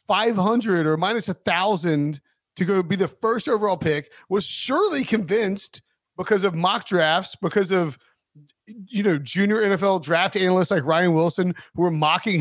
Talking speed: 160 wpm